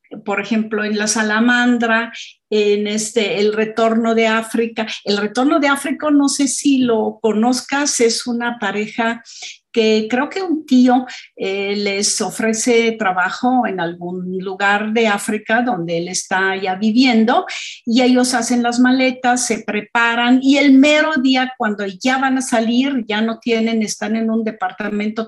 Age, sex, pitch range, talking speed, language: 50-69, female, 210-245 Hz, 155 wpm, Spanish